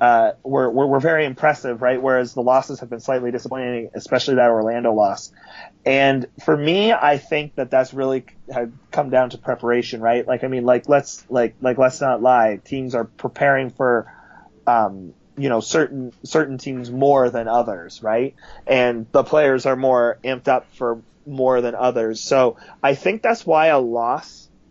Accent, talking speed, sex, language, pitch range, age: American, 180 wpm, male, English, 125-145 Hz, 30-49